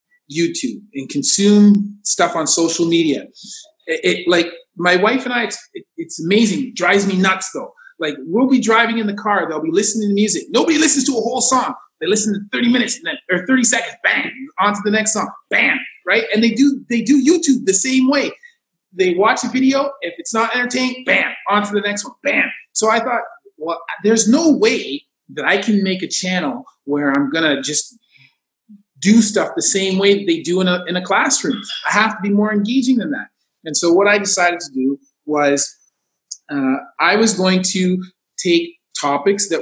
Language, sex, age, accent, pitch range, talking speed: English, male, 30-49, American, 185-260 Hz, 200 wpm